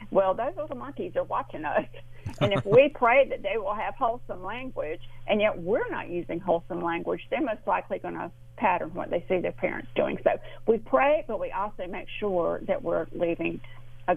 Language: English